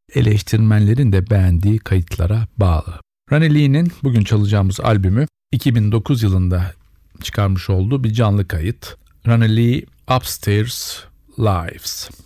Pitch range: 95-115 Hz